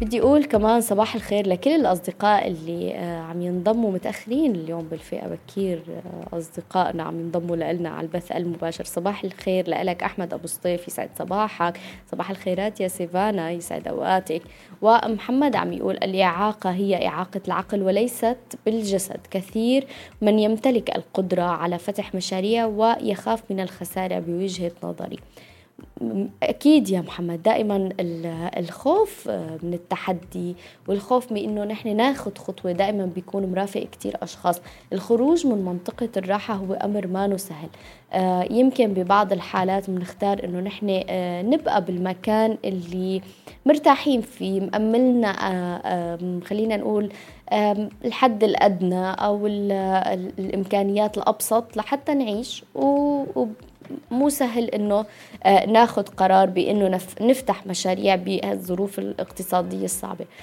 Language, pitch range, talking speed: Arabic, 180-220 Hz, 115 wpm